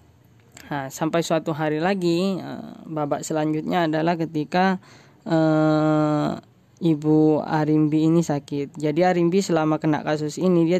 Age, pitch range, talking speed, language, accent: 20-39, 140-155 Hz, 115 wpm, Indonesian, native